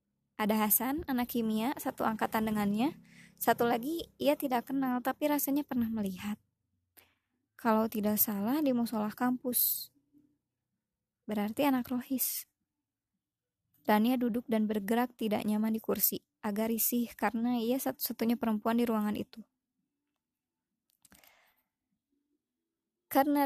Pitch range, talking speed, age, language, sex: 215-260 Hz, 105 wpm, 20-39, Indonesian, male